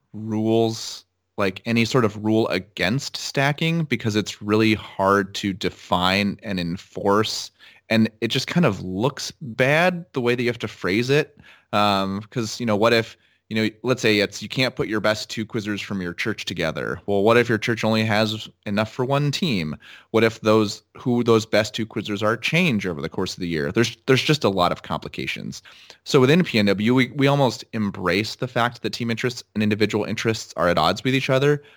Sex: male